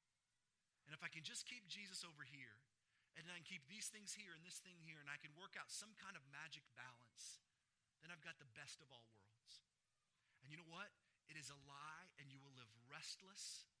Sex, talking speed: male, 220 wpm